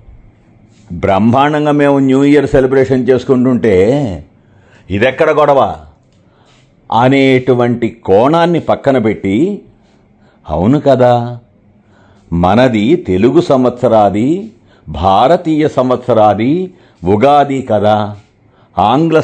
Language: Telugu